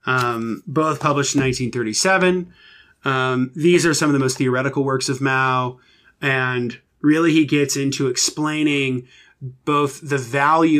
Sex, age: male, 30-49